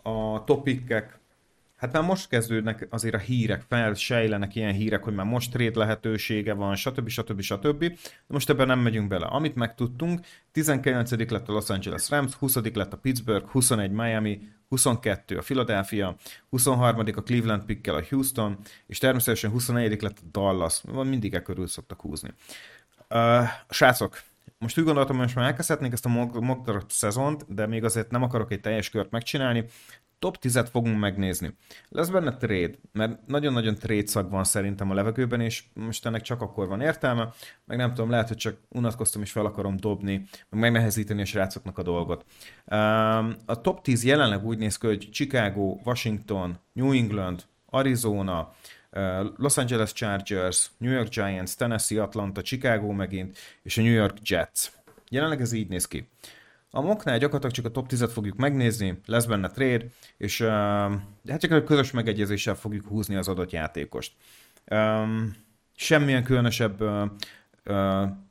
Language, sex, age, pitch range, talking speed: Hungarian, male, 30-49, 100-125 Hz, 165 wpm